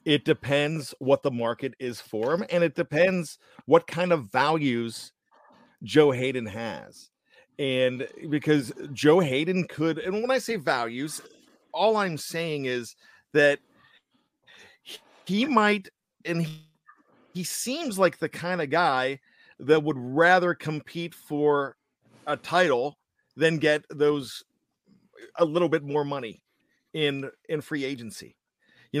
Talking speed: 130 wpm